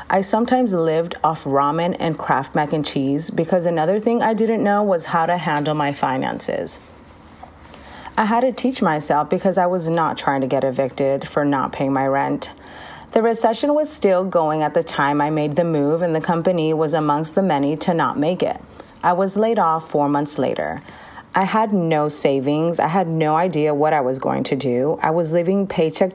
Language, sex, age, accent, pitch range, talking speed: English, female, 30-49, American, 145-185 Hz, 200 wpm